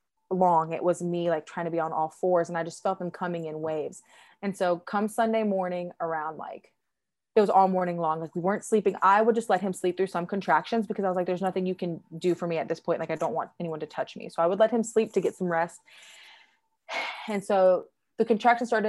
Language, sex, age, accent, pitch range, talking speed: English, female, 20-39, American, 170-215 Hz, 255 wpm